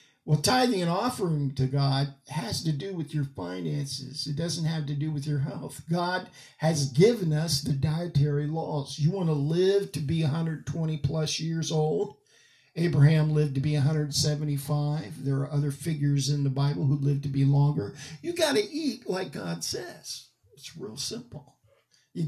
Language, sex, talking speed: English, male, 175 wpm